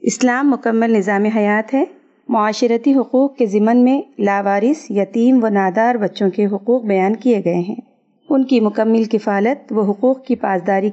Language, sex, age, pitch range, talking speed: Urdu, female, 40-59, 210-265 Hz, 160 wpm